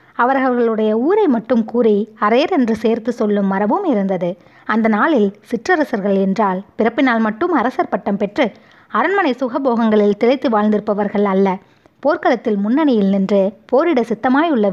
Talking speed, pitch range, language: 120 wpm, 200-260 Hz, Tamil